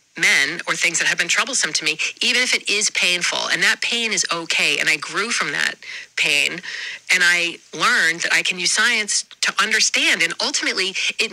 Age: 40-59